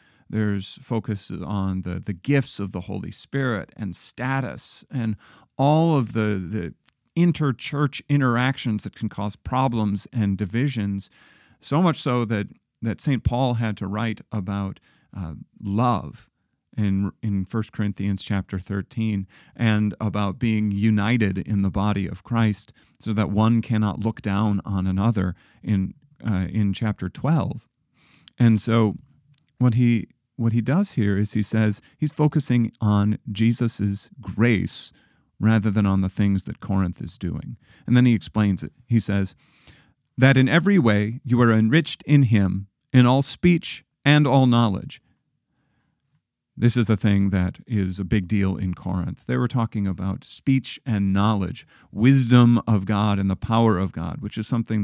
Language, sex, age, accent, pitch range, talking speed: English, male, 40-59, American, 100-120 Hz, 155 wpm